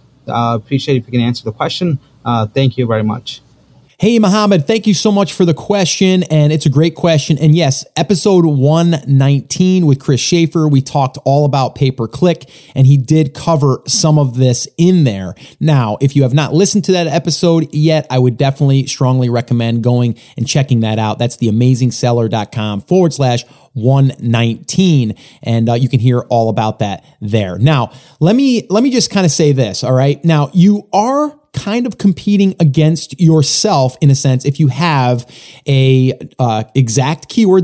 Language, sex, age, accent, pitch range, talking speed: English, male, 30-49, American, 130-170 Hz, 185 wpm